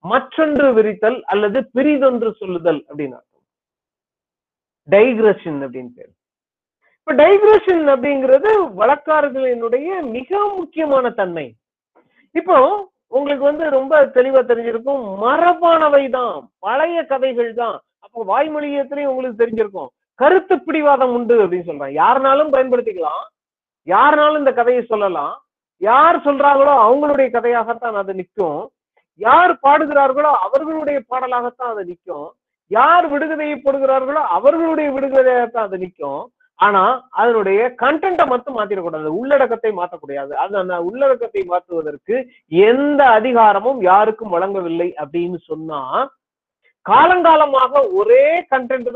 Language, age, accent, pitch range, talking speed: Tamil, 40-59, native, 210-295 Hz, 80 wpm